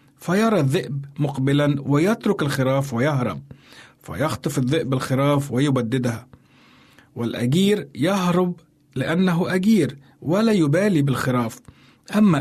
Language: Arabic